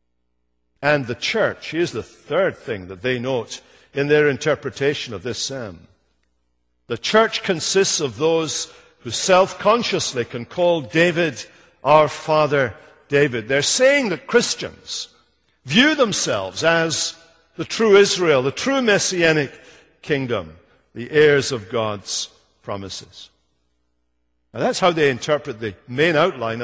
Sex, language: male, English